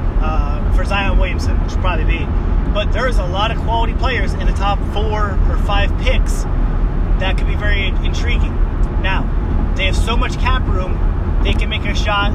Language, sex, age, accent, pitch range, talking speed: English, male, 30-49, American, 75-85 Hz, 200 wpm